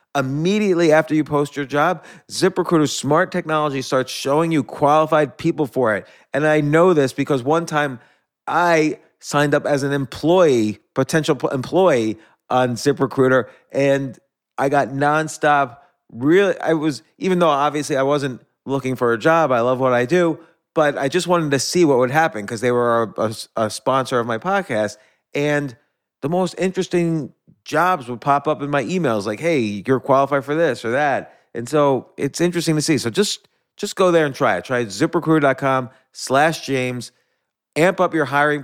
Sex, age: male, 30-49